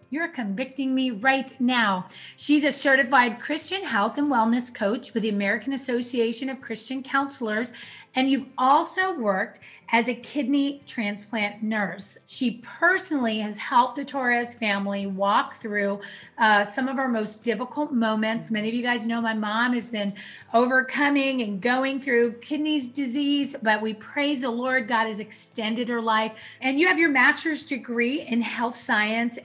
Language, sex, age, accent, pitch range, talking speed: English, female, 30-49, American, 225-285 Hz, 160 wpm